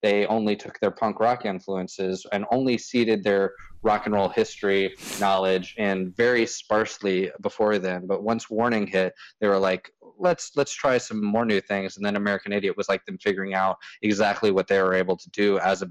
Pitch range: 100-120 Hz